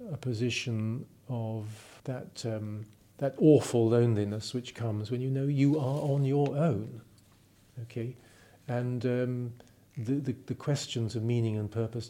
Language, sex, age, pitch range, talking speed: English, male, 50-69, 110-135 Hz, 145 wpm